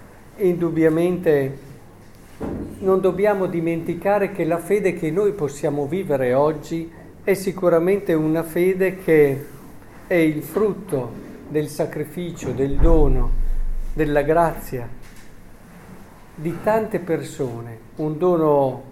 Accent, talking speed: native, 100 wpm